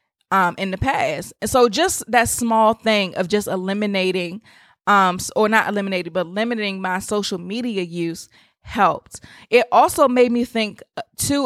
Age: 20-39